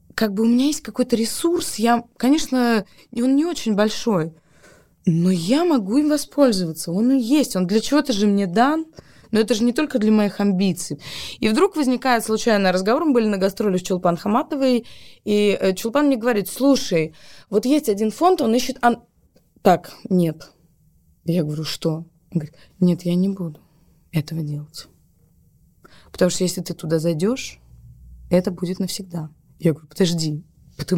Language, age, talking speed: Russian, 20-39, 165 wpm